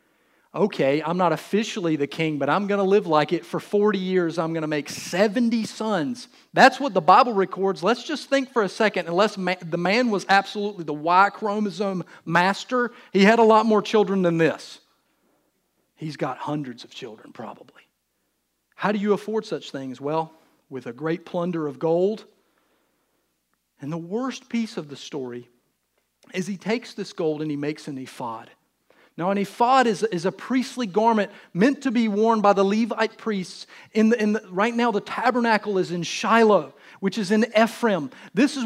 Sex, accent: male, American